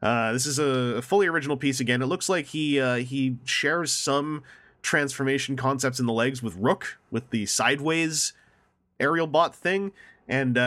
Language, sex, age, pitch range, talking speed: English, male, 30-49, 115-150 Hz, 170 wpm